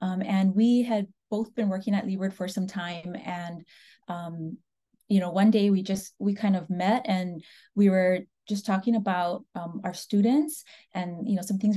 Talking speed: 195 wpm